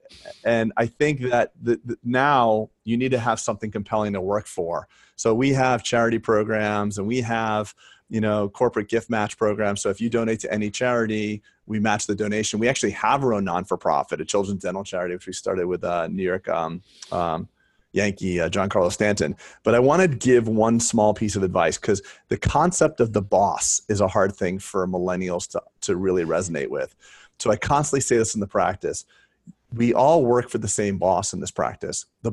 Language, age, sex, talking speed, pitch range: English, 30-49, male, 205 wpm, 100-120 Hz